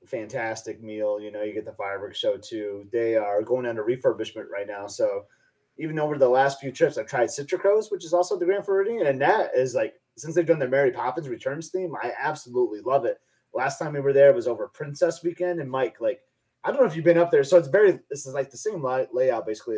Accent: American